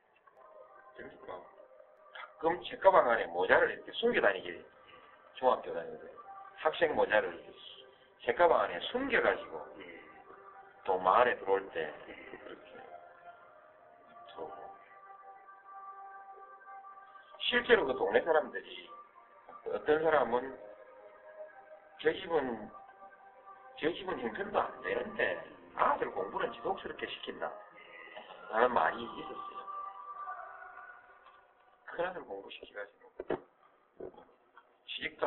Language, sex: Korean, male